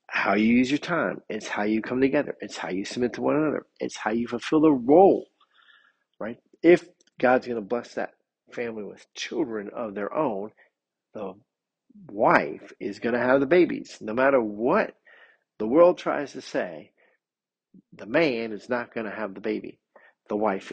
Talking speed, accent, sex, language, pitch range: 180 wpm, American, male, English, 110-140 Hz